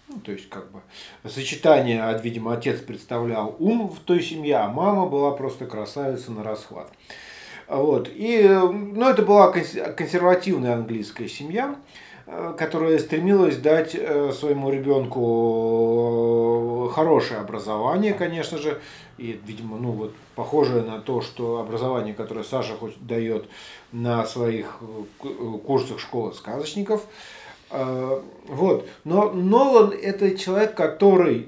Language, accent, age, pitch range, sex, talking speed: Russian, native, 40-59, 120-175 Hz, male, 115 wpm